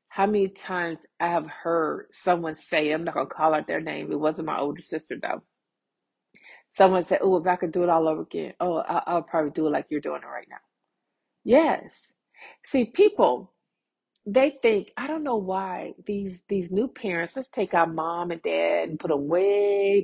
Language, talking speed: English, 200 wpm